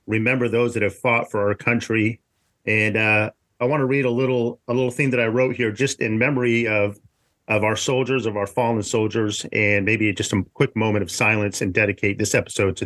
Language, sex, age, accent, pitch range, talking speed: English, male, 40-59, American, 105-125 Hz, 220 wpm